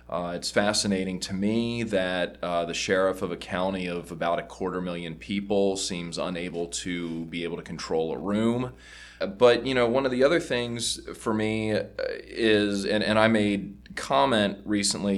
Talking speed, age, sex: 175 wpm, 20-39, male